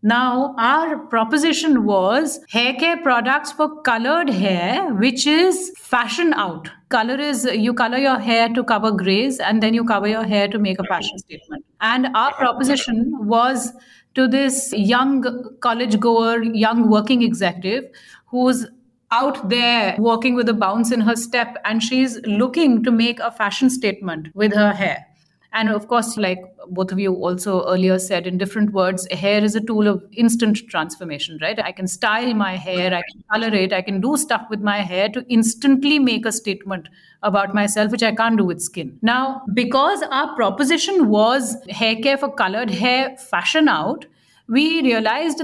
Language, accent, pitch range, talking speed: English, Indian, 210-260 Hz, 175 wpm